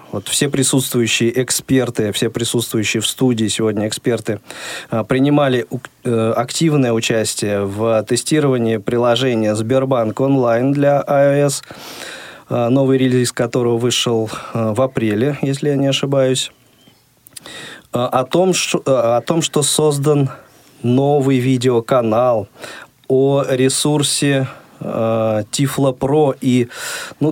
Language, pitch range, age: Russian, 115-140 Hz, 20-39